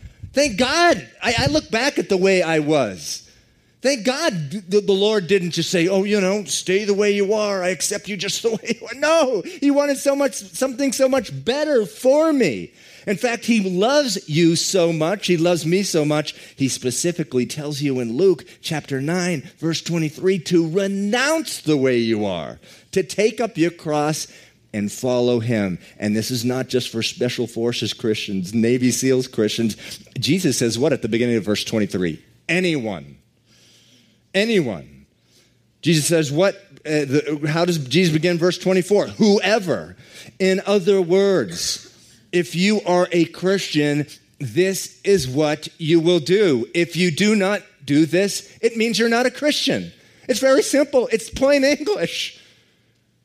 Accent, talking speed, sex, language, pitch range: American, 165 wpm, male, English, 140-210 Hz